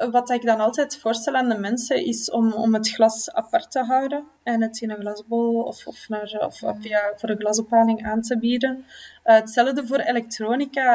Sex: female